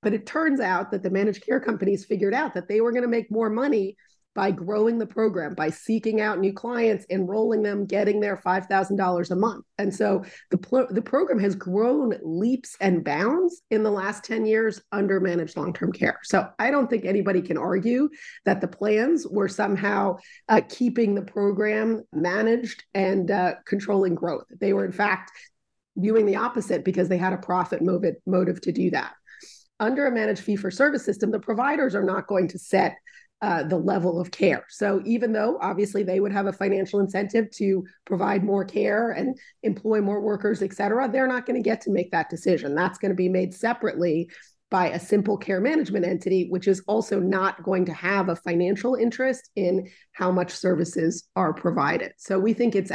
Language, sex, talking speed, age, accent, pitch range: English, female, 190 wpm, 30-49, American, 185-225 Hz